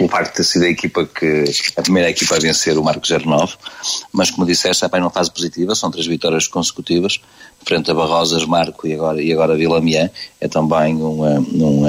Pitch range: 85-100 Hz